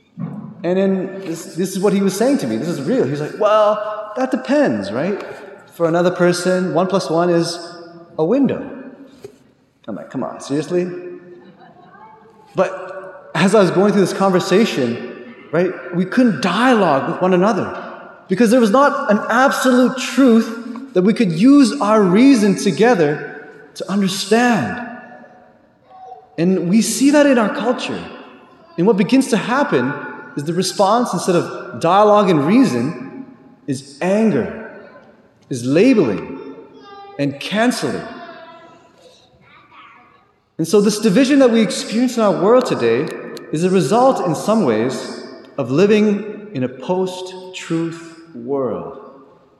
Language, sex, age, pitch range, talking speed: English, male, 30-49, 170-235 Hz, 140 wpm